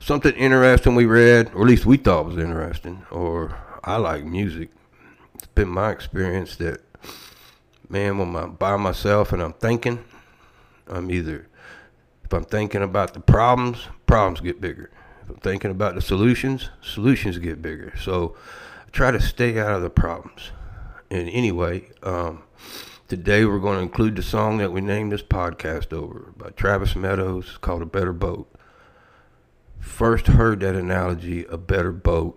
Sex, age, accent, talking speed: male, 60-79, American, 160 wpm